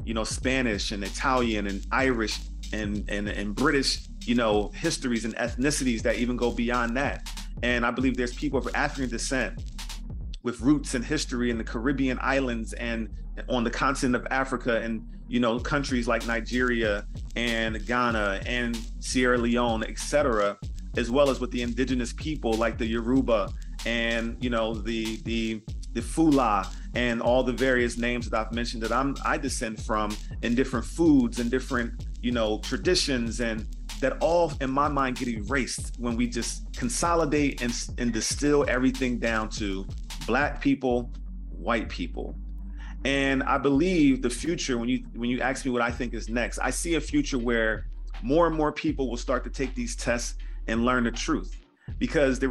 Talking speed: 175 wpm